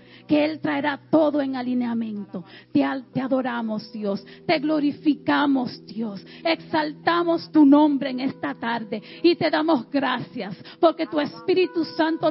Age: 40-59